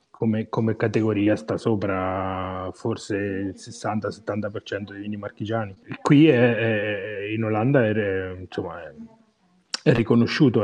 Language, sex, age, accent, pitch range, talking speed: Italian, male, 30-49, native, 105-135 Hz, 120 wpm